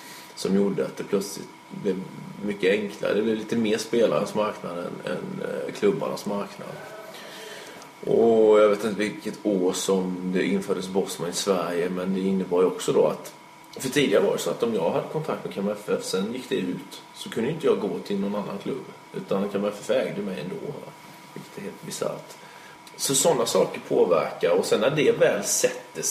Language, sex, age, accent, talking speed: Swedish, male, 30-49, native, 185 wpm